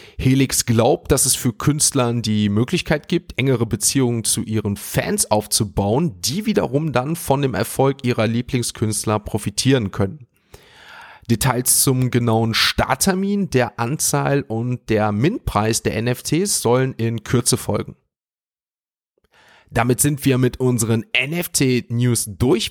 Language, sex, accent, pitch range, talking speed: German, male, German, 110-135 Hz, 125 wpm